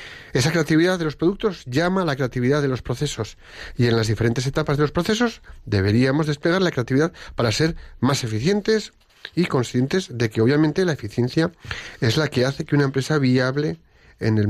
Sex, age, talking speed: male, 40-59, 185 wpm